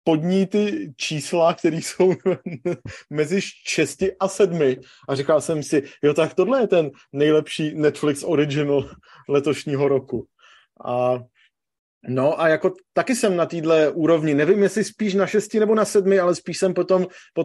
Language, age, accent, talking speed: Czech, 30-49, native, 150 wpm